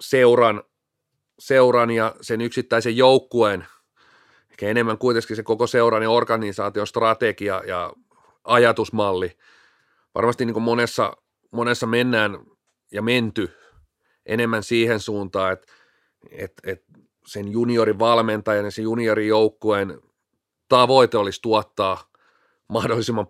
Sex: male